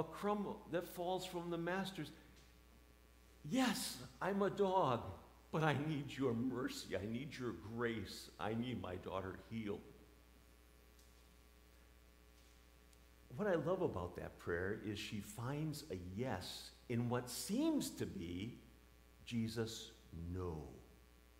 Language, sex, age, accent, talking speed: English, male, 50-69, American, 120 wpm